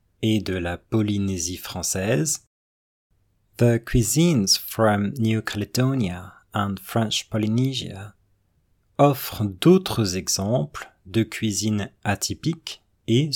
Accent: French